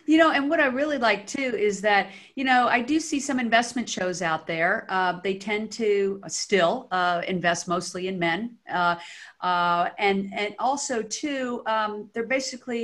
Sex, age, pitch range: female, 50-69, 175-240 Hz